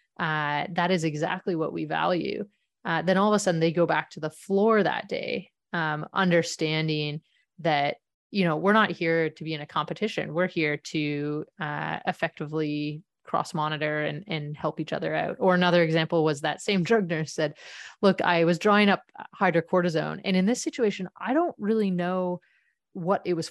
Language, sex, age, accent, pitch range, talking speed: English, female, 30-49, American, 155-185 Hz, 185 wpm